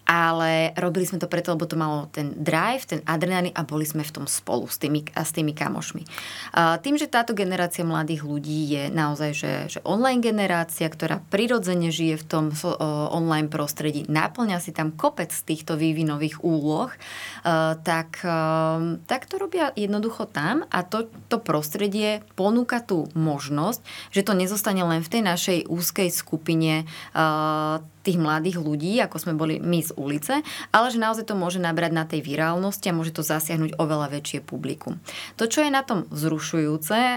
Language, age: Slovak, 20-39